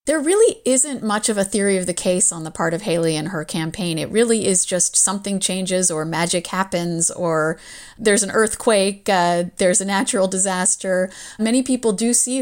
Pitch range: 175-220 Hz